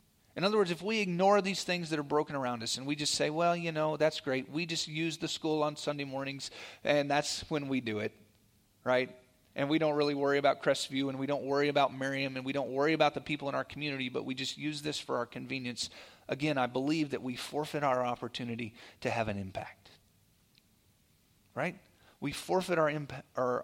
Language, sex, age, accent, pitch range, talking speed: English, male, 30-49, American, 130-170 Hz, 220 wpm